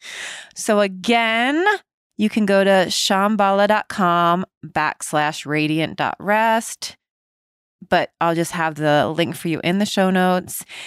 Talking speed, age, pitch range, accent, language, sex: 115 wpm, 20-39, 160-210 Hz, American, English, female